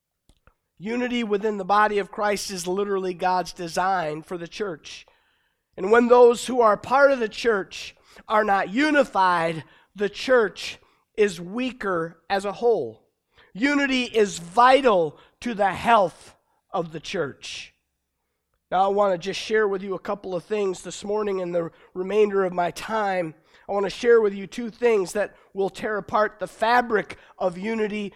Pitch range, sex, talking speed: 185-230 Hz, male, 165 wpm